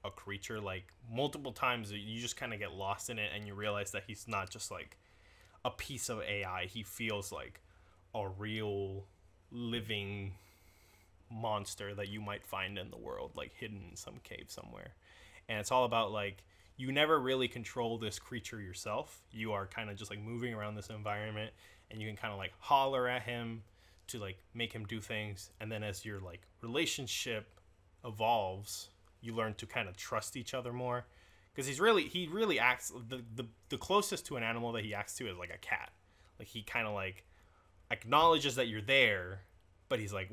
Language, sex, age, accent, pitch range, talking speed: English, male, 20-39, American, 95-115 Hz, 195 wpm